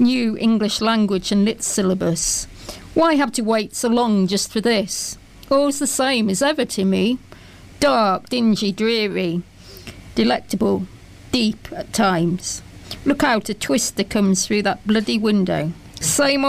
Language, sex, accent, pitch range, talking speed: English, female, British, 185-235 Hz, 140 wpm